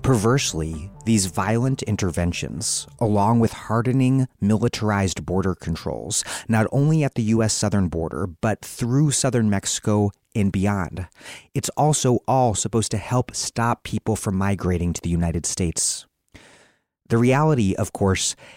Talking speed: 135 wpm